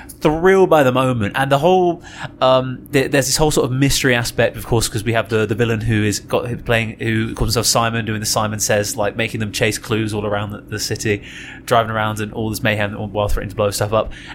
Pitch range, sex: 110-140 Hz, male